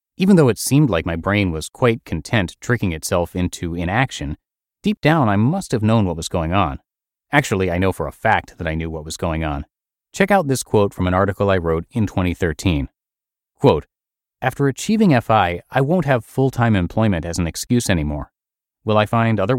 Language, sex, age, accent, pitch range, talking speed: English, male, 30-49, American, 90-130 Hz, 200 wpm